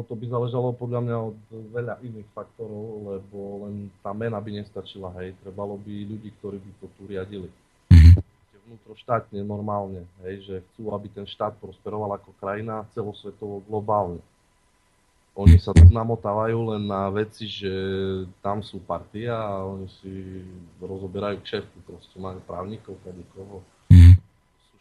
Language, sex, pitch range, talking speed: Slovak, male, 100-120 Hz, 145 wpm